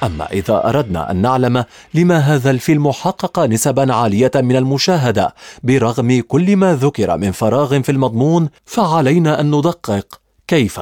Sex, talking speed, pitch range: male, 140 wpm, 115-155 Hz